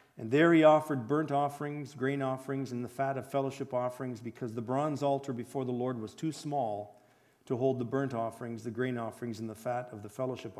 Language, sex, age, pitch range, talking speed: English, male, 50-69, 120-160 Hz, 215 wpm